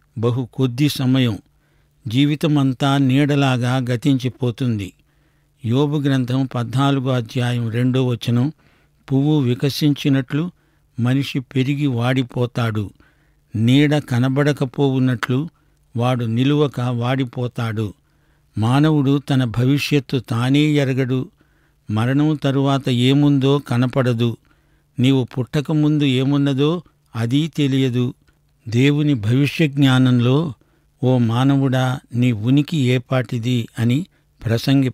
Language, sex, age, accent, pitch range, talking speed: Telugu, male, 50-69, native, 125-145 Hz, 80 wpm